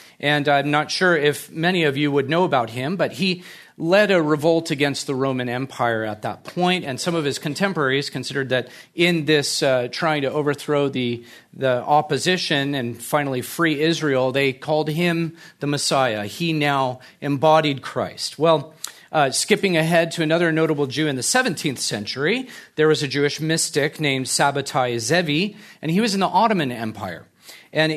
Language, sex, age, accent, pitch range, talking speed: English, male, 40-59, American, 125-160 Hz, 175 wpm